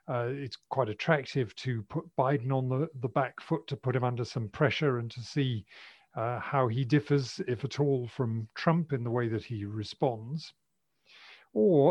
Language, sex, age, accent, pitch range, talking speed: English, male, 40-59, British, 115-145 Hz, 185 wpm